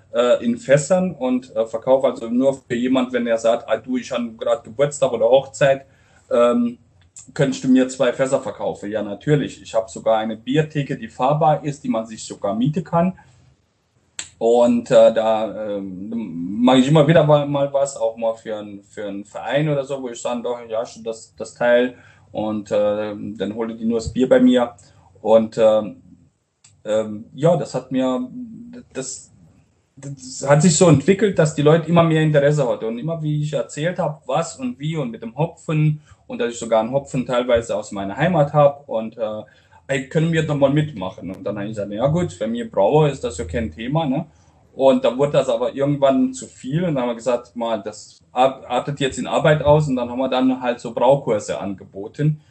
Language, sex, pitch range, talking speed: German, male, 115-150 Hz, 200 wpm